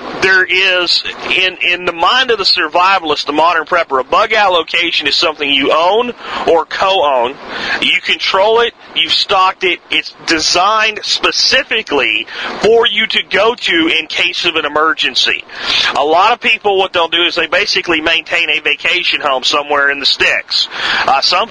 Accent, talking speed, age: American, 175 wpm, 40-59